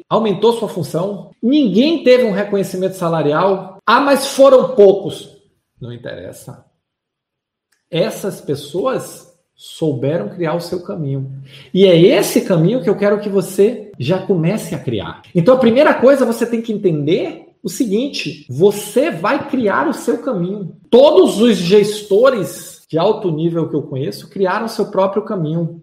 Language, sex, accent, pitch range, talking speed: Portuguese, male, Brazilian, 160-215 Hz, 150 wpm